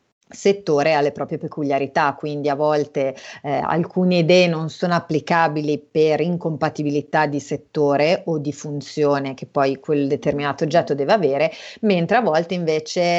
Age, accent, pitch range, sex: 30-49, native, 150-175 Hz, female